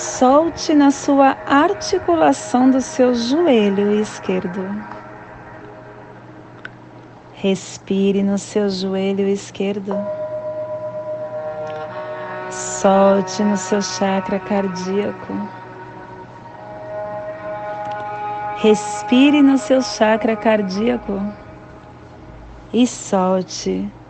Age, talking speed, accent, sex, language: 40-59, 60 wpm, Brazilian, female, Portuguese